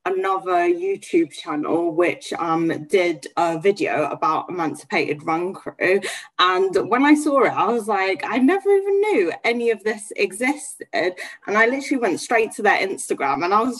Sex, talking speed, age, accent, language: female, 170 wpm, 10-29, British, English